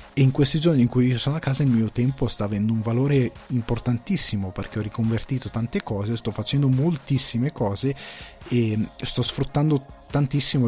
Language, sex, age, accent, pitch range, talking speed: Italian, male, 20-39, native, 110-135 Hz, 170 wpm